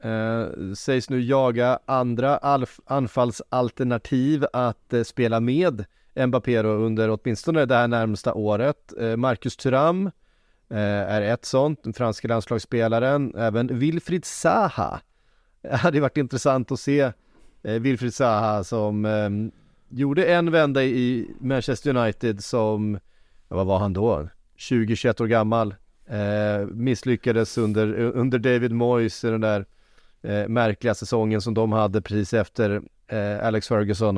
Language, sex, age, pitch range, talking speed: Swedish, male, 30-49, 105-130 Hz, 135 wpm